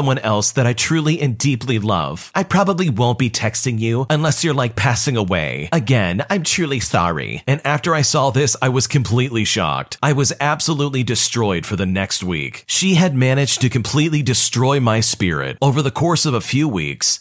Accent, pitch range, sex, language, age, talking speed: American, 105-145 Hz, male, English, 40-59, 190 wpm